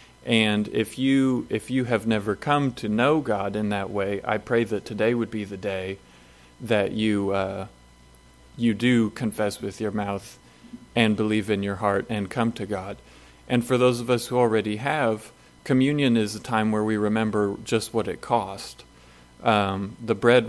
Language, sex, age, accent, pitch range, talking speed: English, male, 40-59, American, 100-115 Hz, 180 wpm